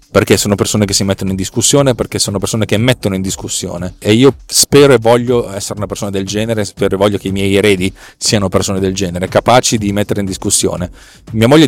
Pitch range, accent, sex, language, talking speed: 100-125 Hz, native, male, Italian, 220 wpm